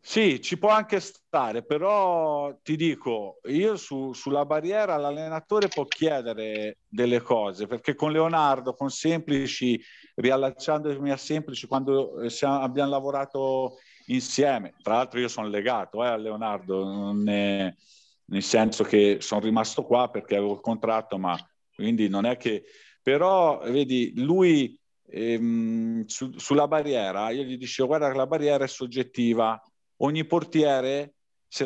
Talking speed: 130 wpm